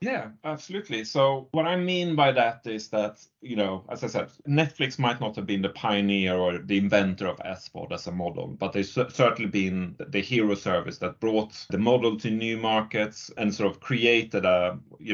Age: 30-49